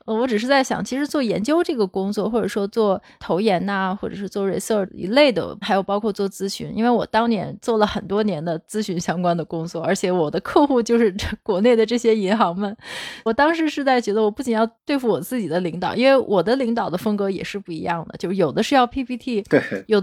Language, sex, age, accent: Chinese, female, 20-39, native